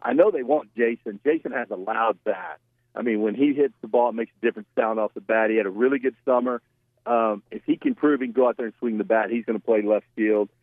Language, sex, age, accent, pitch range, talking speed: English, male, 50-69, American, 110-125 Hz, 290 wpm